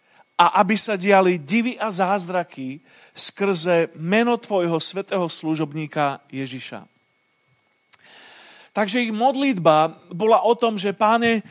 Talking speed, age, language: 110 wpm, 40-59, Slovak